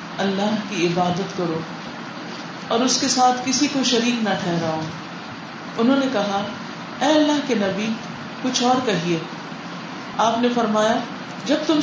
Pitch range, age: 190-235 Hz, 40-59